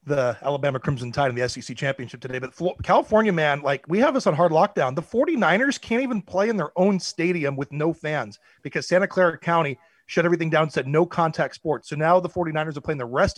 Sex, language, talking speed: male, English, 230 wpm